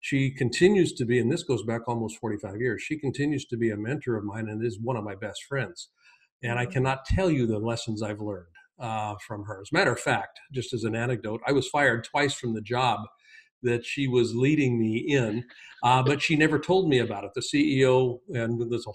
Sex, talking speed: male, 230 wpm